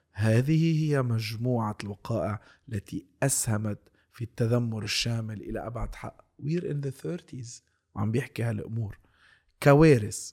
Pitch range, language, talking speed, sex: 105-130 Hz, Arabic, 115 wpm, male